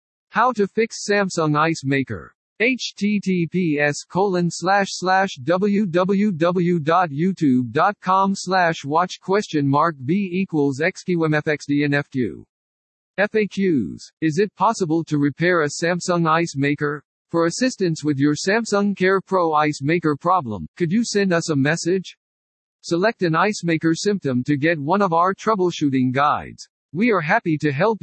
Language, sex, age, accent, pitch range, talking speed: English, male, 50-69, American, 145-190 Hz, 115 wpm